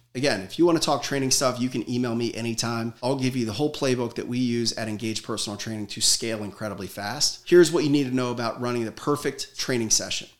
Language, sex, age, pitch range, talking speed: English, male, 30-49, 115-145 Hz, 240 wpm